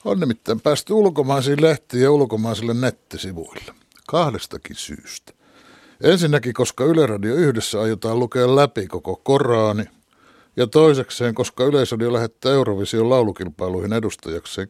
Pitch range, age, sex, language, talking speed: 110-150 Hz, 60-79, male, Finnish, 115 wpm